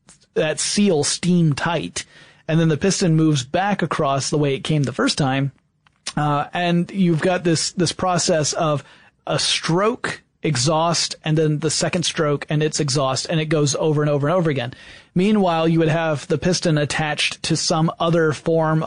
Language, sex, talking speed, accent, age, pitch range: English, male, 180 wpm, American, 30-49, 150-175 Hz